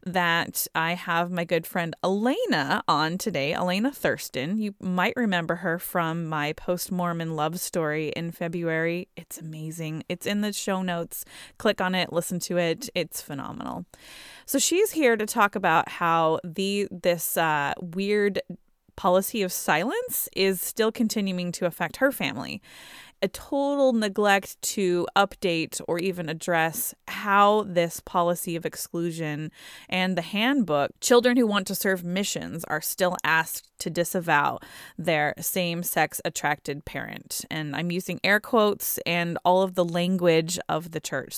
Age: 20-39